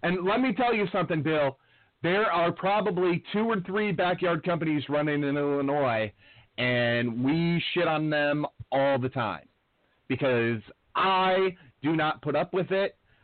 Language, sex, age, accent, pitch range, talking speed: English, male, 40-59, American, 130-170 Hz, 155 wpm